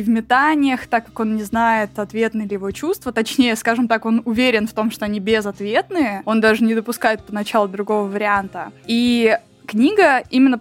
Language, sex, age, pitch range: Russian, female, 20-39, 215-245 Hz